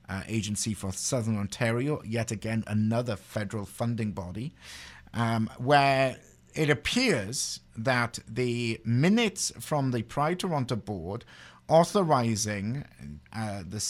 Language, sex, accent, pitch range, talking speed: English, male, British, 100-130 Hz, 110 wpm